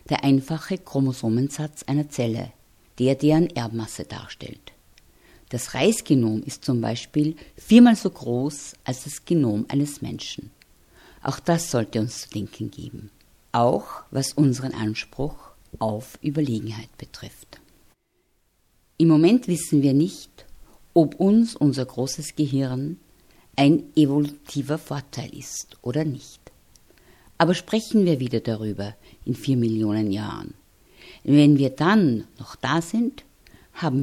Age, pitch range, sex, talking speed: 50-69, 120-155 Hz, female, 120 wpm